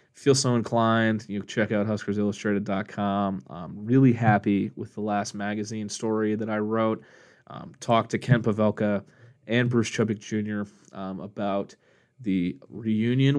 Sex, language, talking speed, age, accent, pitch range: male, English, 140 wpm, 20-39, American, 100-115 Hz